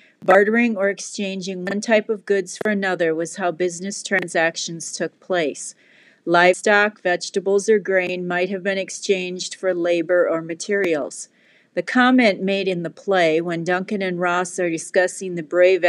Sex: female